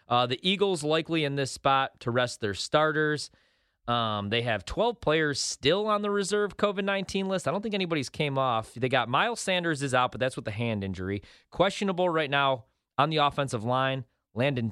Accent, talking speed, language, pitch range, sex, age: American, 195 wpm, English, 115-150 Hz, male, 30-49